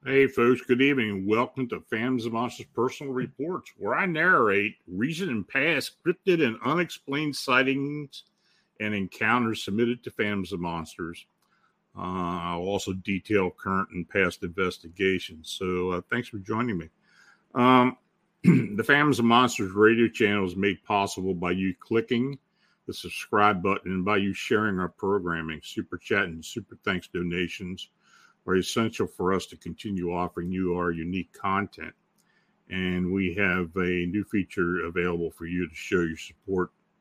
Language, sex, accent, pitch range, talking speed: English, male, American, 95-125 Hz, 150 wpm